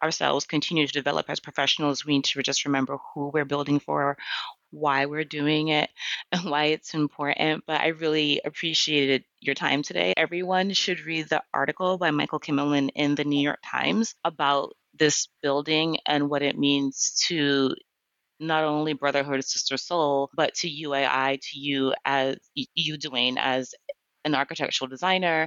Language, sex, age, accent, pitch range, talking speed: English, female, 30-49, American, 140-165 Hz, 160 wpm